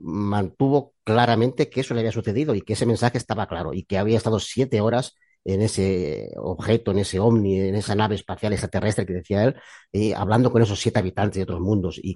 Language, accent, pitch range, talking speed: Spanish, Spanish, 100-120 Hz, 210 wpm